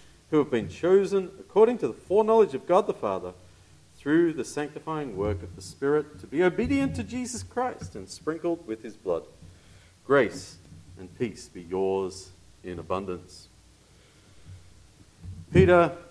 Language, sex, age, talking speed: English, male, 40-59, 140 wpm